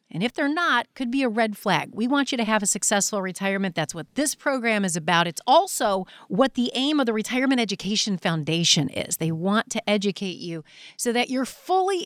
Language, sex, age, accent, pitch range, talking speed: English, female, 40-59, American, 180-260 Hz, 215 wpm